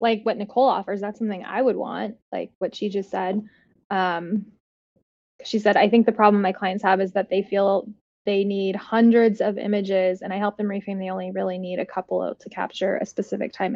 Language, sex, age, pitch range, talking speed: English, female, 10-29, 195-235 Hz, 215 wpm